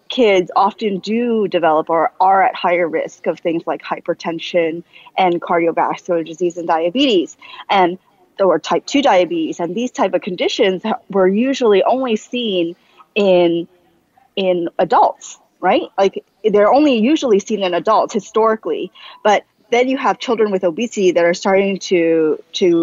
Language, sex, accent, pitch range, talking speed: English, female, American, 175-220 Hz, 145 wpm